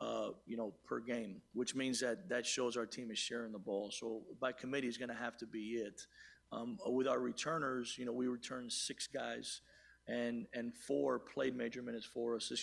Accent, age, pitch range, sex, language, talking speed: American, 40-59, 115-125 Hz, male, English, 215 wpm